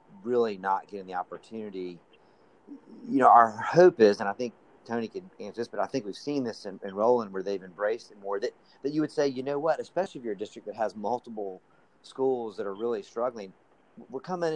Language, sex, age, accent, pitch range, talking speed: English, male, 40-59, American, 100-120 Hz, 225 wpm